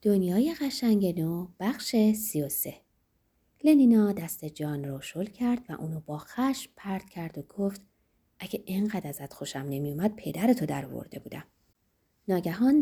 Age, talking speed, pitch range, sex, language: 30-49, 145 wpm, 150-240 Hz, female, Persian